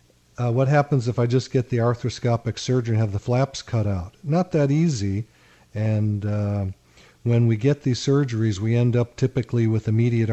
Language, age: English, 50-69